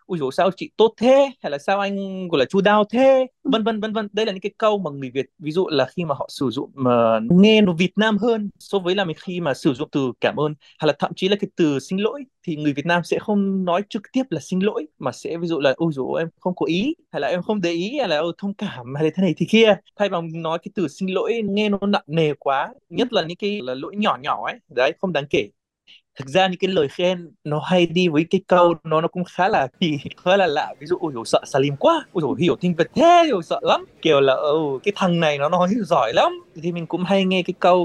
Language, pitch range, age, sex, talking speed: Vietnamese, 150-195 Hz, 20-39, male, 280 wpm